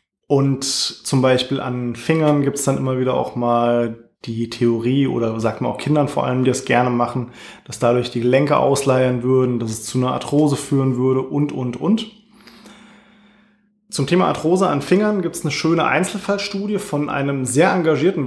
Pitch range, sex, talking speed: 130-160 Hz, male, 180 wpm